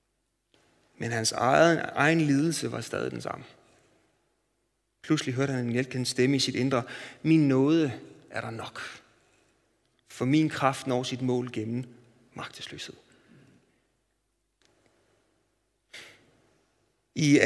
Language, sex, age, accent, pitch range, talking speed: Danish, male, 30-49, native, 125-185 Hz, 110 wpm